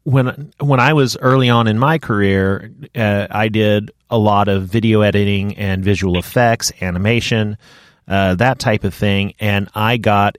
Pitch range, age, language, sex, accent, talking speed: 105-135 Hz, 30-49, English, male, American, 170 wpm